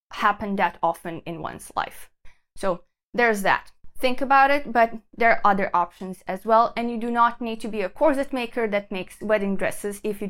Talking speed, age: 205 wpm, 20-39